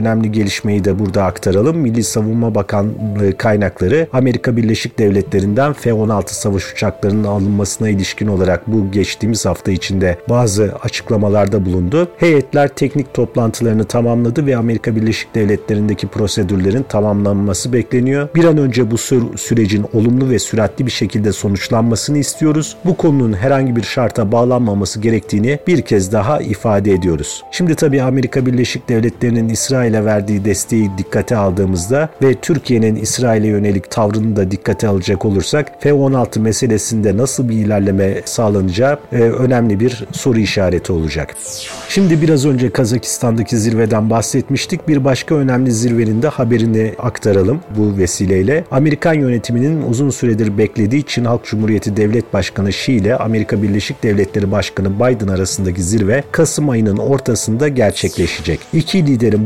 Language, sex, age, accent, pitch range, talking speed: Turkish, male, 40-59, native, 105-130 Hz, 135 wpm